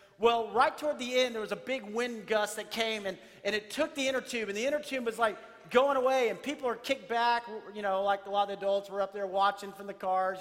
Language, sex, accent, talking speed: English, male, American, 270 wpm